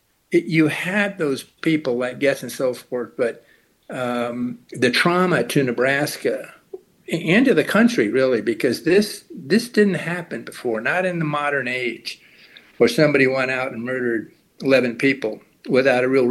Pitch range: 125-175 Hz